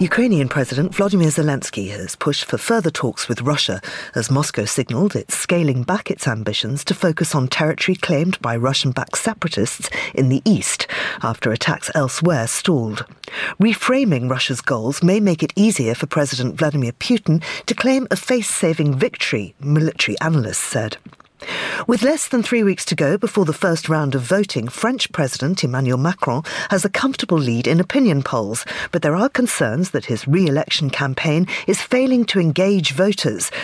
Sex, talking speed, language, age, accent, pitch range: female, 160 wpm, English, 40-59, British, 135-195 Hz